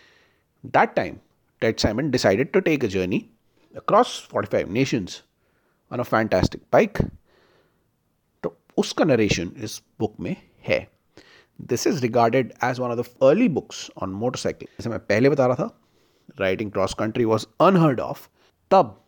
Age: 30-49